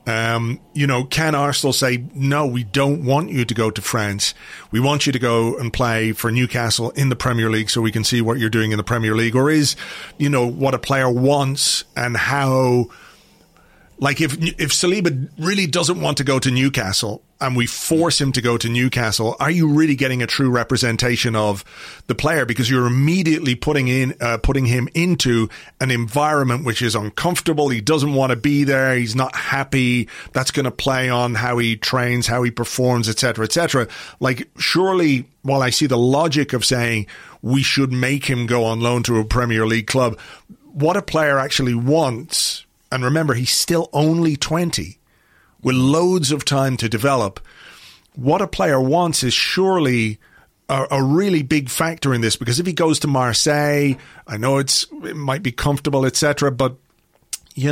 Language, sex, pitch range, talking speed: English, male, 120-145 Hz, 190 wpm